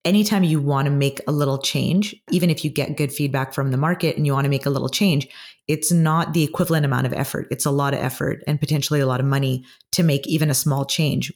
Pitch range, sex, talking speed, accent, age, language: 140-160 Hz, female, 260 wpm, American, 30-49, English